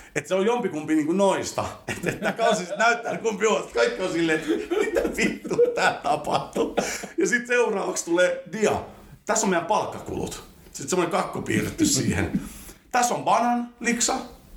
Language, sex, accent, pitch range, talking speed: Finnish, male, native, 110-185 Hz, 150 wpm